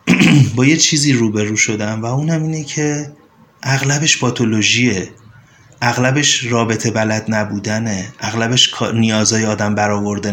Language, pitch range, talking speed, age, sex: Persian, 105-135 Hz, 115 wpm, 30-49, male